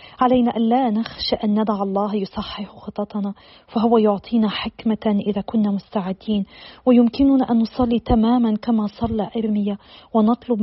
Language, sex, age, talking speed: Arabic, female, 40-59, 130 wpm